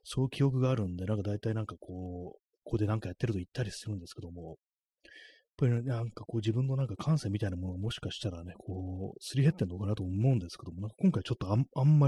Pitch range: 90-120 Hz